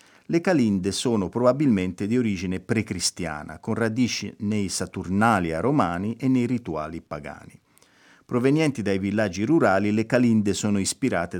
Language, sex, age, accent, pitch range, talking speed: Italian, male, 50-69, native, 90-120 Hz, 125 wpm